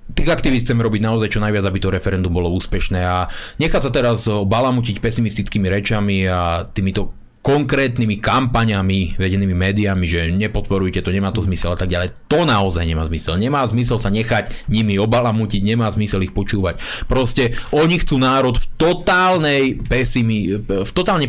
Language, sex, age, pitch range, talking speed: Slovak, male, 30-49, 105-150 Hz, 160 wpm